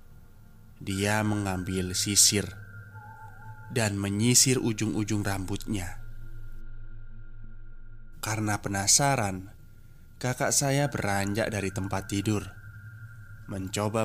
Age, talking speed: 20-39, 70 wpm